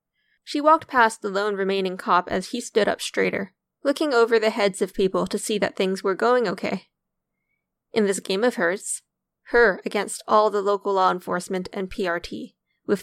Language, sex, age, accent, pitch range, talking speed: English, female, 10-29, American, 195-245 Hz, 185 wpm